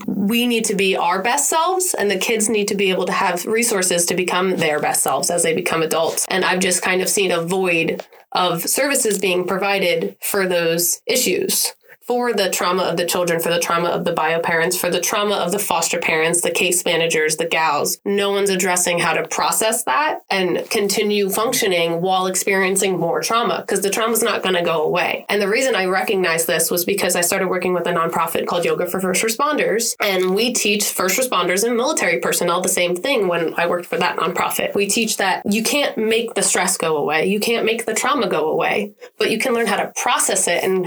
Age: 20-39